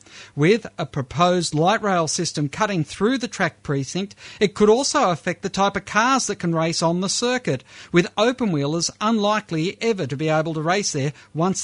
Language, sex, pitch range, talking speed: English, male, 145-200 Hz, 190 wpm